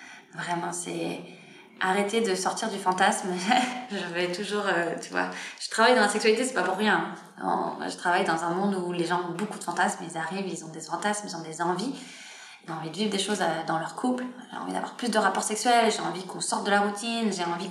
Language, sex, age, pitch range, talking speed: French, female, 20-39, 190-230 Hz, 245 wpm